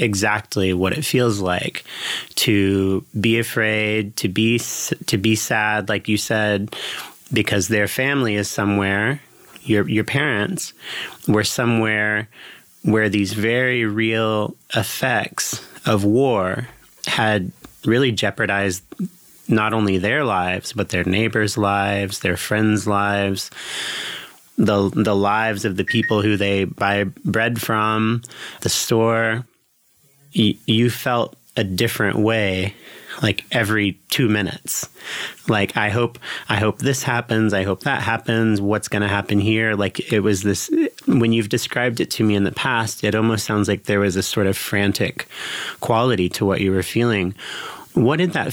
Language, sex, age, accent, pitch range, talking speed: English, male, 30-49, American, 100-115 Hz, 145 wpm